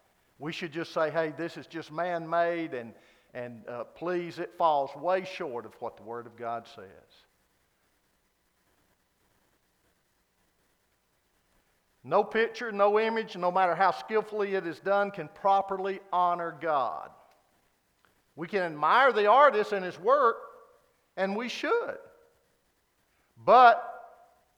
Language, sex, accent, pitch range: English, male, American, 145-200 Hz